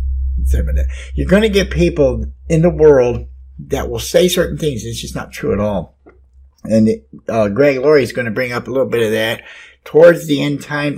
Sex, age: male, 60-79